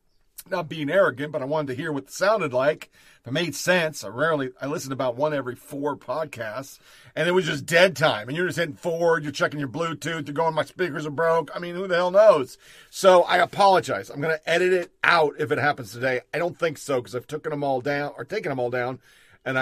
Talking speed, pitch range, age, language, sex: 250 wpm, 120-155 Hz, 40-59, English, male